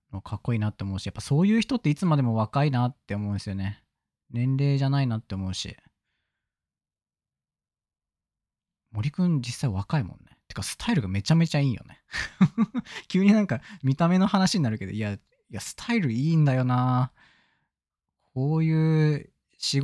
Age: 20-39